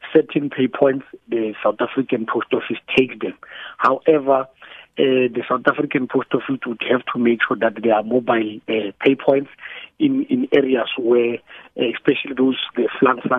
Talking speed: 170 wpm